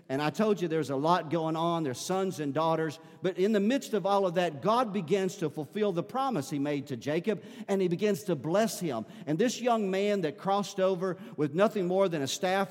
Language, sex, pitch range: English, male, 160-205 Hz